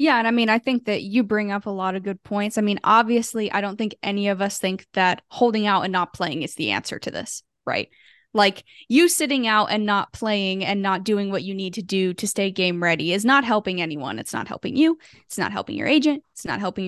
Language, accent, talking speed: English, American, 255 wpm